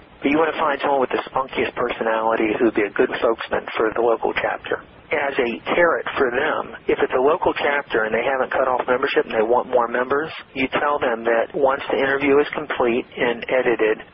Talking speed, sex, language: 220 wpm, male, English